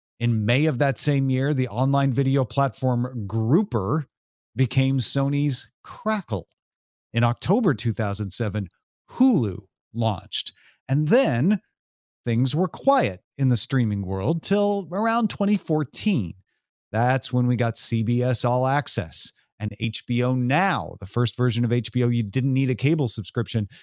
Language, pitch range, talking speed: English, 115-155 Hz, 130 wpm